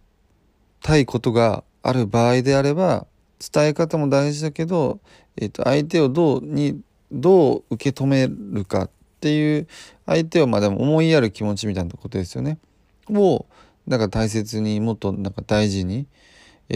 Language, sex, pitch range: Japanese, male, 100-145 Hz